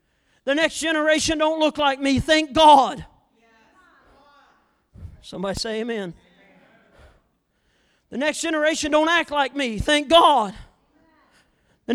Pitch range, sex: 195-310 Hz, male